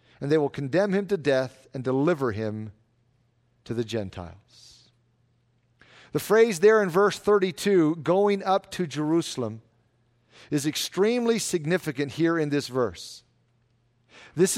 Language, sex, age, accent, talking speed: English, male, 50-69, American, 130 wpm